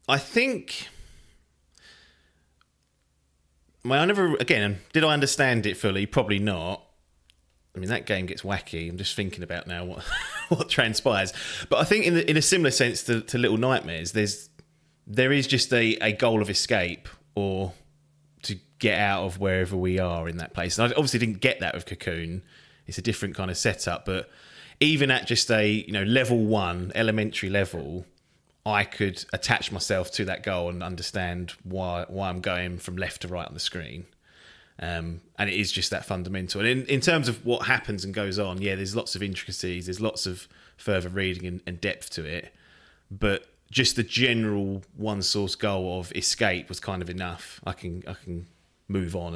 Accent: British